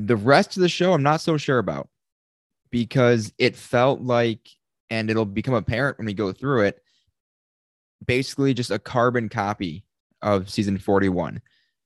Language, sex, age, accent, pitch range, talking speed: English, male, 20-39, American, 100-125 Hz, 155 wpm